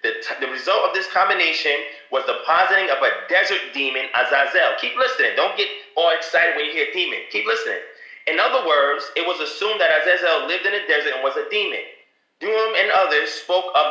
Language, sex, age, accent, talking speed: English, male, 30-49, American, 205 wpm